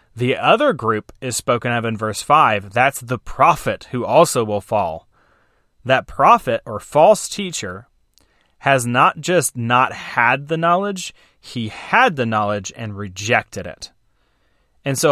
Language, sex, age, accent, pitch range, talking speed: English, male, 30-49, American, 110-140 Hz, 145 wpm